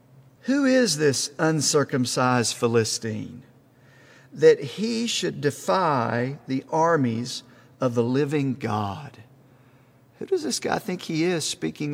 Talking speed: 115 wpm